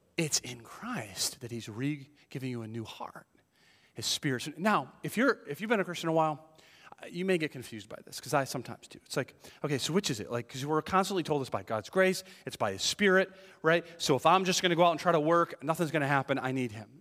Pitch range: 120-170 Hz